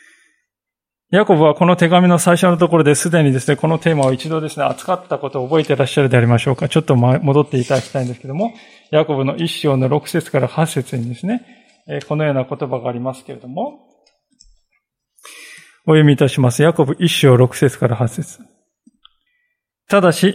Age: 20-39